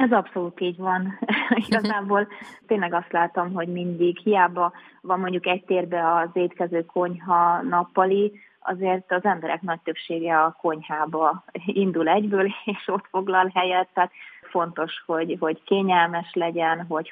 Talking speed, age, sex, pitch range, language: 135 wpm, 20-39, female, 165-185 Hz, Hungarian